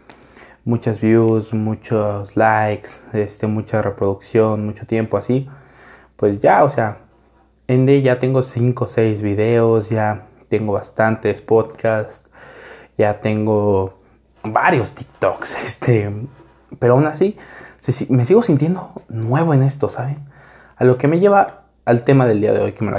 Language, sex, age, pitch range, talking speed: Spanish, male, 20-39, 110-130 Hz, 140 wpm